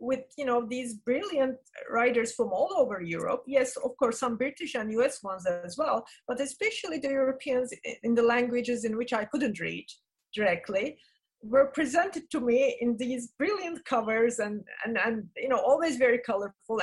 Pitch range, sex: 210-270 Hz, female